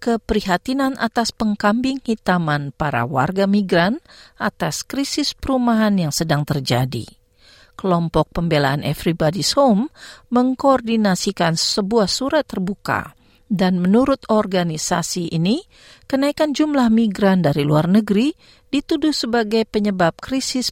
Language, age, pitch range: Indonesian, 50-69, 160-235 Hz